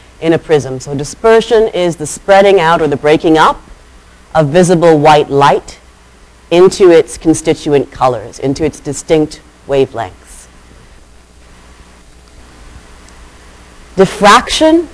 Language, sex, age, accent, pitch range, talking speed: English, female, 40-59, American, 130-185 Hz, 105 wpm